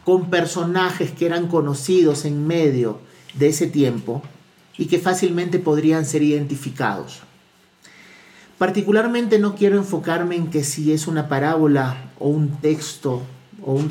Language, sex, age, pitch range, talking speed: Spanish, male, 50-69, 140-185 Hz, 135 wpm